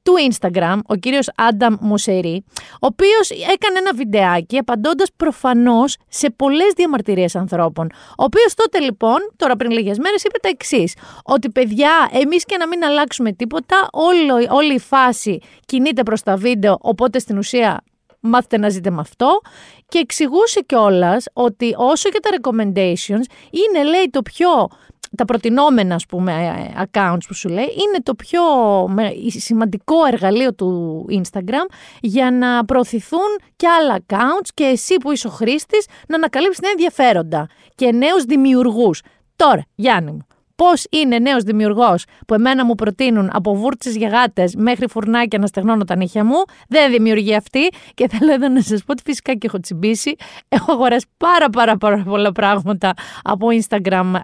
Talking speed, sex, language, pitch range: 160 wpm, female, Greek, 210-285 Hz